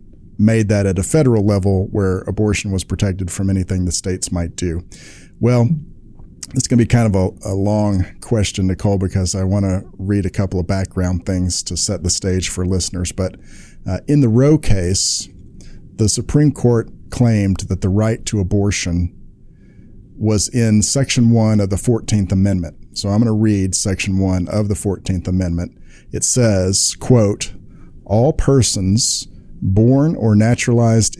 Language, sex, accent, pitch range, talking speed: English, male, American, 95-110 Hz, 165 wpm